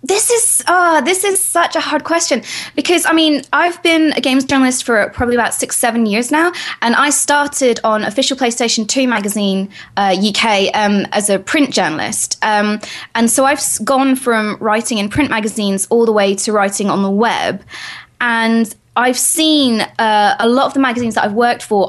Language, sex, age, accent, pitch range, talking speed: English, female, 20-39, British, 205-270 Hz, 190 wpm